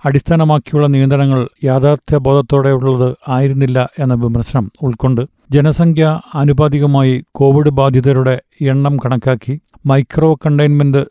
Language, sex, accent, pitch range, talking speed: Malayalam, male, native, 130-150 Hz, 80 wpm